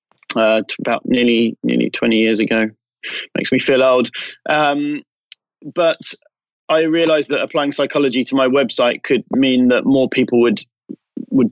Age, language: 30-49, English